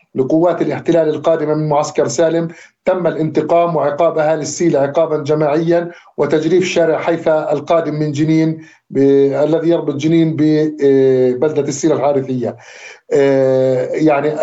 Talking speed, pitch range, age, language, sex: 110 wpm, 145-165 Hz, 50-69, Arabic, male